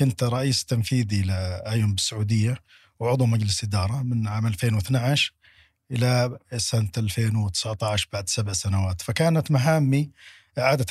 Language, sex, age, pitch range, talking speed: Arabic, male, 50-69, 105-125 Hz, 110 wpm